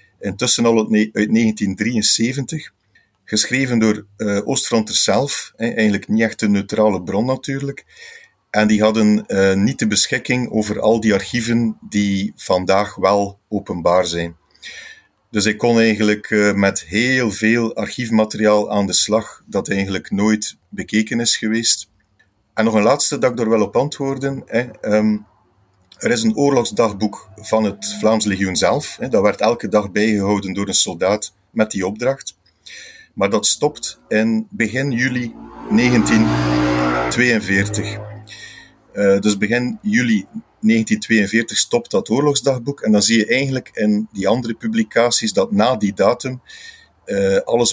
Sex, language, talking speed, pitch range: male, Dutch, 130 wpm, 105-120 Hz